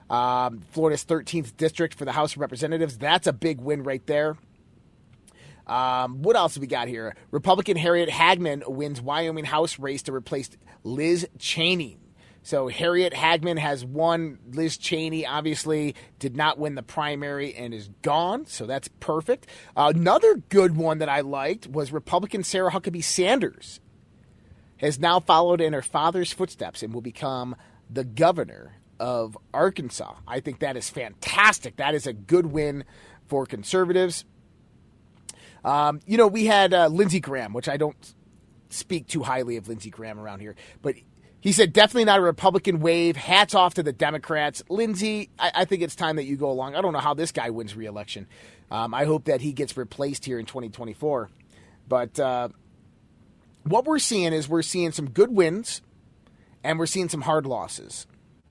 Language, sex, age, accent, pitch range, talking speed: English, male, 30-49, American, 130-175 Hz, 170 wpm